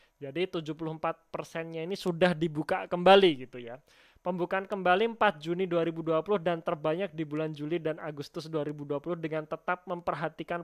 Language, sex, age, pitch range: Indonesian, male, 20-39, 155-185 Hz